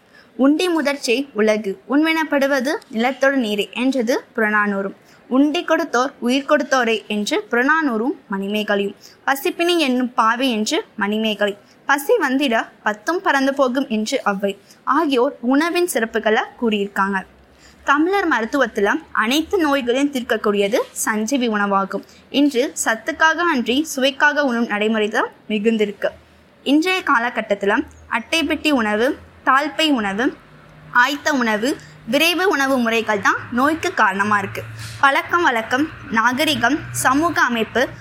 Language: Tamil